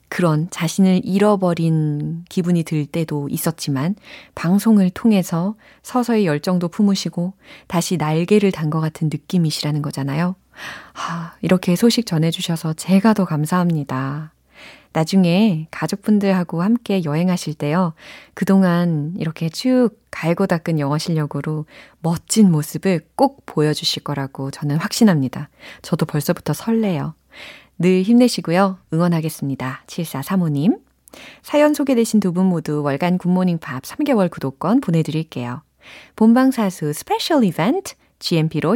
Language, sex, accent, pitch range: Korean, female, native, 155-220 Hz